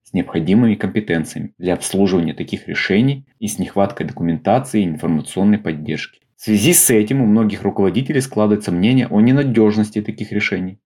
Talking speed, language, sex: 150 wpm, Russian, male